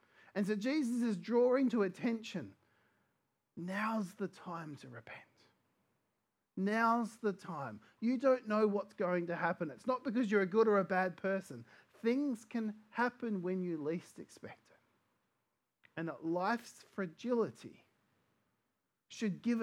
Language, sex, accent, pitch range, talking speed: English, male, Australian, 180-235 Hz, 140 wpm